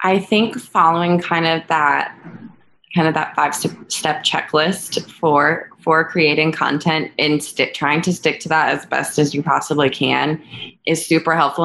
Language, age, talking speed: English, 20-39, 160 wpm